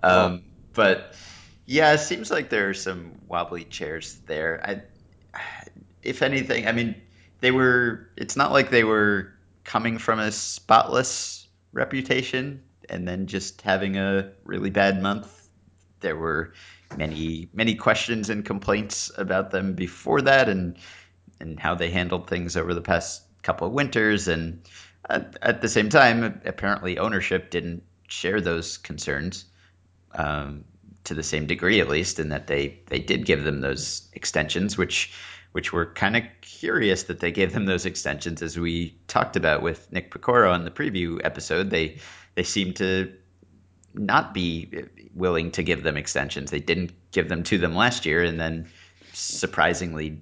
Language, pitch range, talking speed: English, 85-105 Hz, 160 wpm